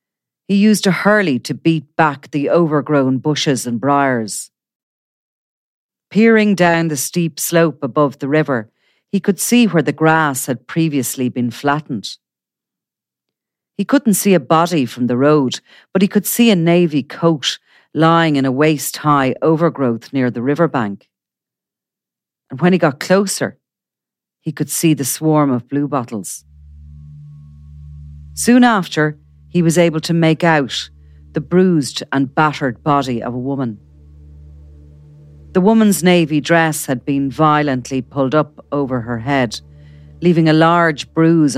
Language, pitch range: English, 115-165 Hz